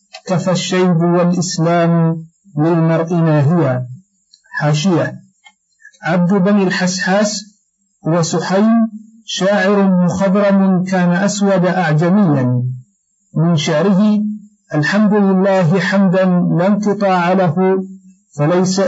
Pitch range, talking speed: 170-200 Hz, 85 wpm